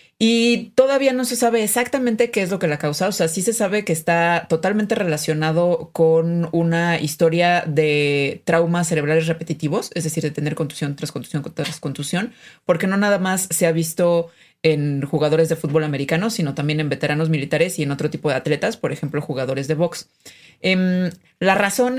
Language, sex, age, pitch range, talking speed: Spanish, female, 30-49, 155-180 Hz, 185 wpm